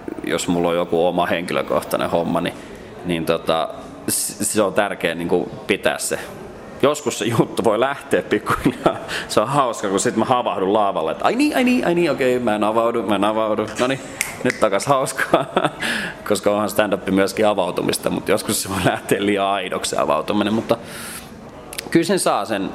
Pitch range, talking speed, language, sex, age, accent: 90-105 Hz, 180 wpm, Finnish, male, 30-49, native